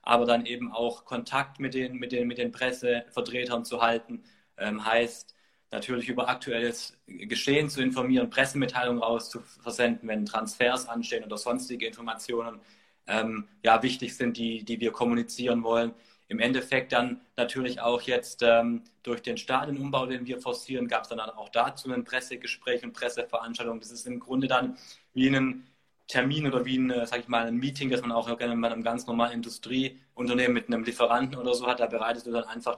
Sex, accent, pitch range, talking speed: male, German, 115-130 Hz, 180 wpm